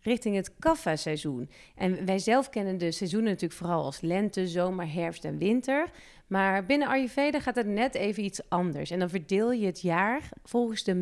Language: Dutch